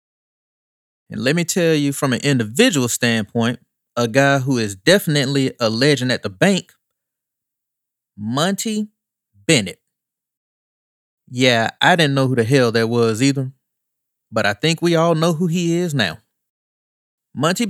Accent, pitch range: American, 120-175 Hz